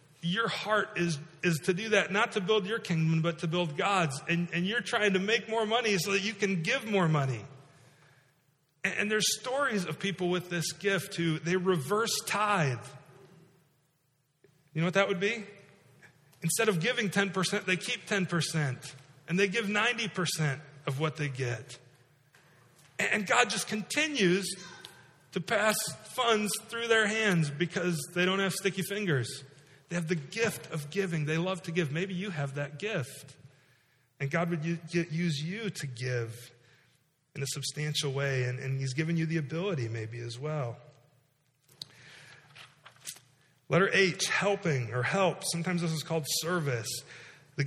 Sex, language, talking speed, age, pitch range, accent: male, English, 160 wpm, 40-59, 140-195 Hz, American